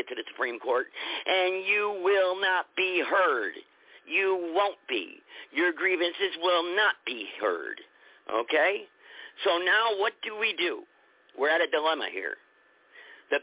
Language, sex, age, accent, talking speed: English, male, 50-69, American, 145 wpm